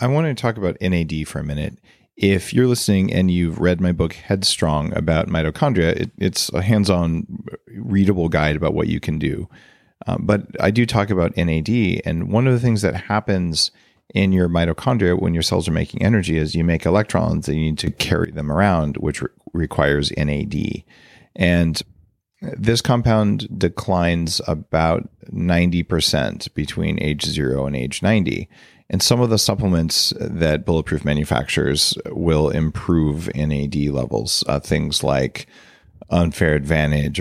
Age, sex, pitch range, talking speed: 40-59, male, 75-95 Hz, 160 wpm